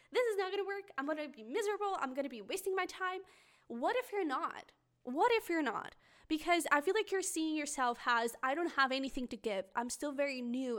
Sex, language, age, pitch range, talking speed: female, English, 10-29, 235-295 Hz, 245 wpm